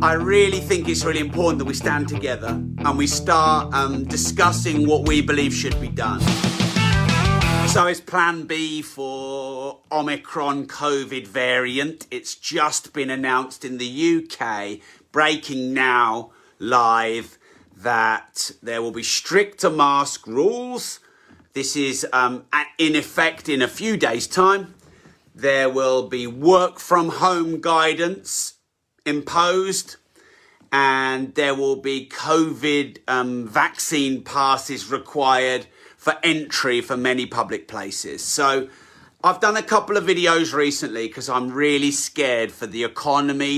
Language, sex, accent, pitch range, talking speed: English, male, British, 130-160 Hz, 130 wpm